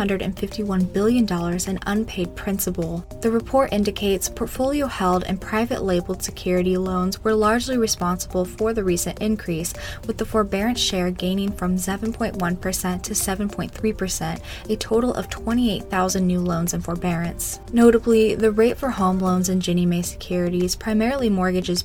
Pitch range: 180-210 Hz